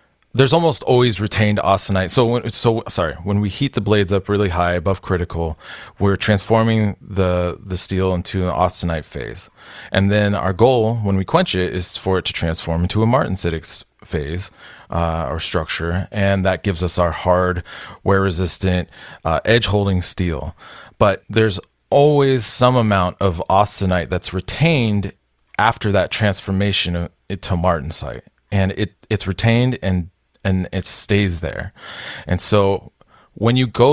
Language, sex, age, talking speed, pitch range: English, male, 30-49, 155 wpm, 90-110 Hz